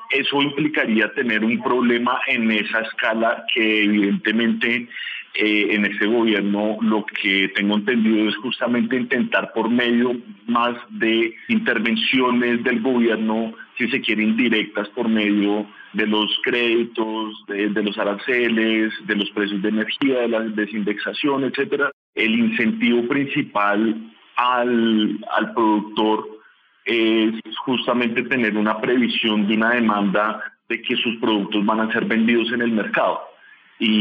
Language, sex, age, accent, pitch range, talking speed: Spanish, male, 40-59, Colombian, 105-120 Hz, 135 wpm